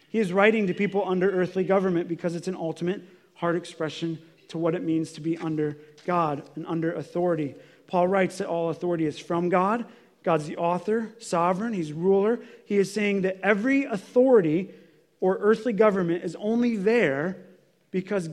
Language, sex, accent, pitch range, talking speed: English, male, American, 170-230 Hz, 170 wpm